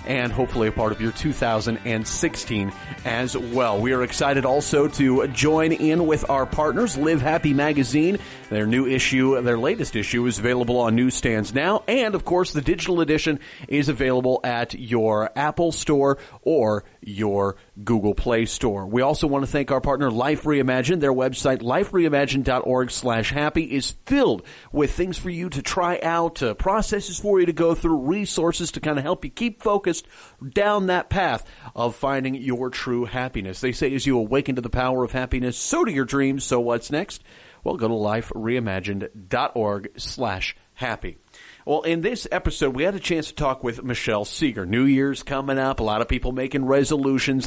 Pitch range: 120-160 Hz